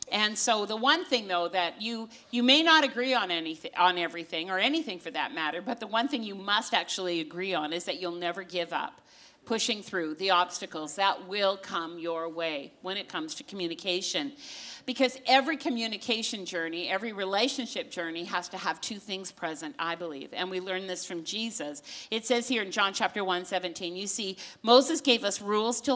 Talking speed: 195 wpm